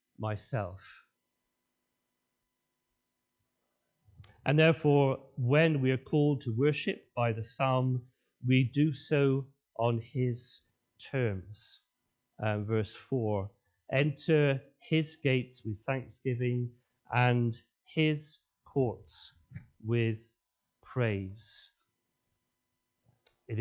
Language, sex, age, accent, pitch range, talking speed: English, male, 40-59, British, 115-140 Hz, 80 wpm